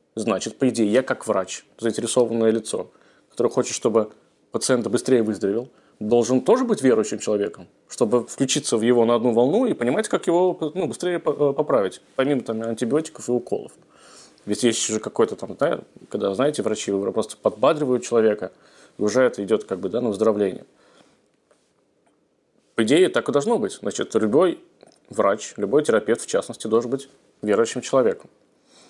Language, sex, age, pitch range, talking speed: Russian, male, 20-39, 115-140 Hz, 160 wpm